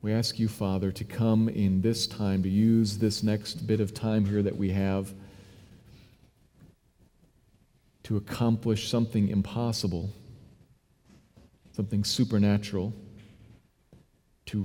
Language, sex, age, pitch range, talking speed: English, male, 40-59, 100-110 Hz, 110 wpm